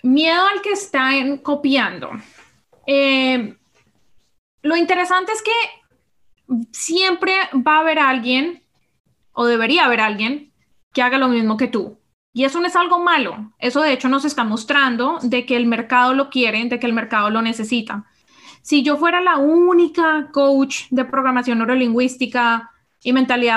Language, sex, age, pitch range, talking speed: Spanish, female, 20-39, 245-295 Hz, 155 wpm